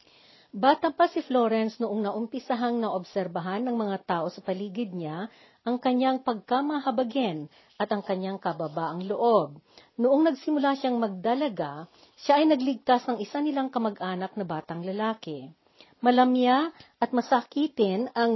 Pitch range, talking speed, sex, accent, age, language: 190-255 Hz, 125 wpm, female, native, 50-69, Filipino